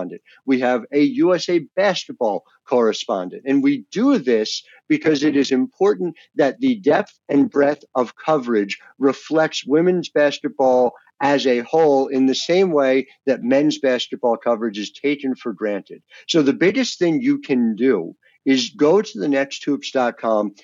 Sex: male